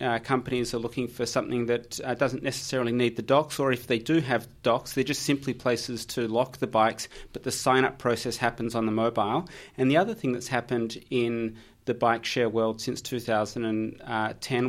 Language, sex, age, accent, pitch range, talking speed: English, male, 30-49, Australian, 115-130 Hz, 195 wpm